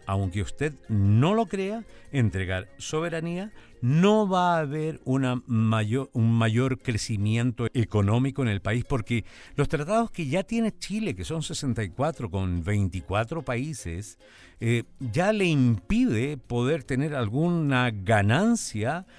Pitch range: 110-170 Hz